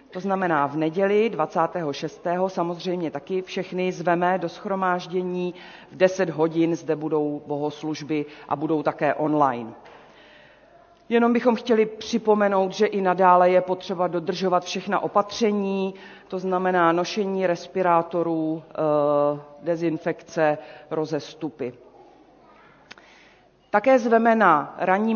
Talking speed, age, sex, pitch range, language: 105 wpm, 40-59, female, 155-195 Hz, Czech